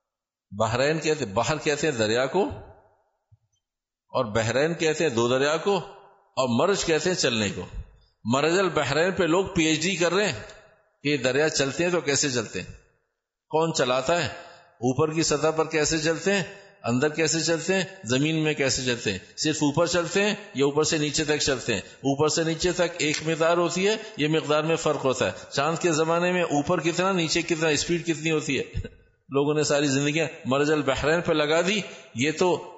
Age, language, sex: 50-69, Urdu, male